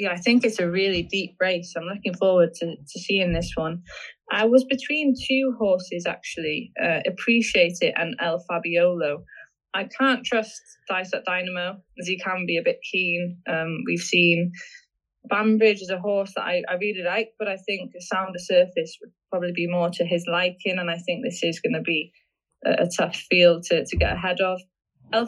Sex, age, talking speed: female, 20-39, 200 wpm